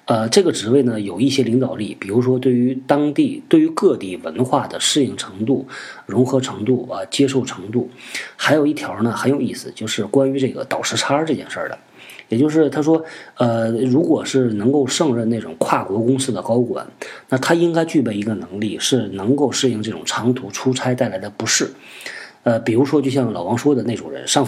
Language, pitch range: Chinese, 115-140 Hz